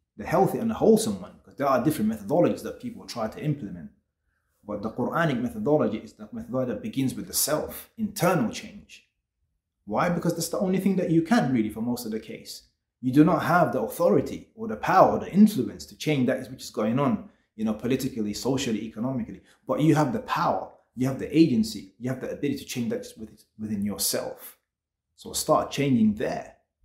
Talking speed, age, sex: 205 wpm, 30-49, male